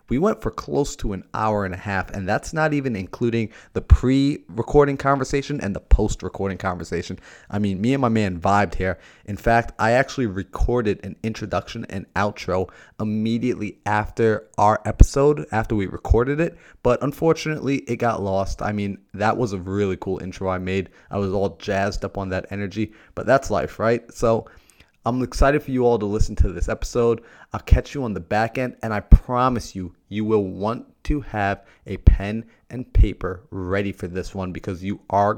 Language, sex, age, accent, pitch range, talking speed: English, male, 30-49, American, 95-115 Hz, 190 wpm